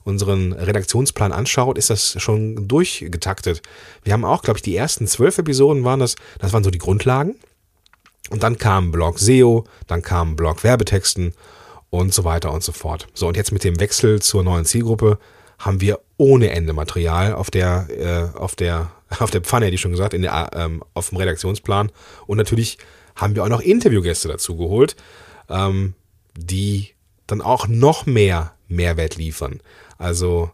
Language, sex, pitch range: German, male, 90-115 Hz